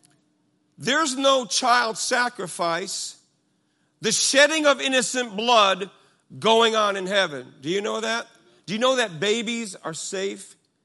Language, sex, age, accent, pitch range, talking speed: English, male, 50-69, American, 205-295 Hz, 135 wpm